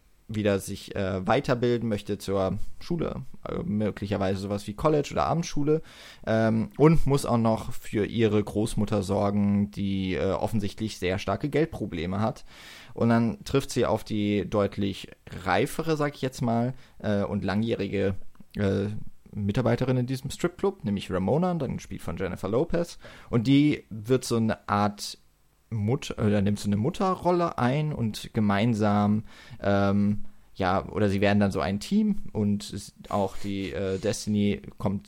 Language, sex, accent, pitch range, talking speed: German, male, German, 100-120 Hz, 150 wpm